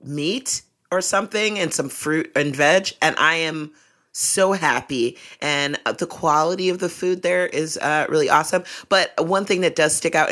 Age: 30-49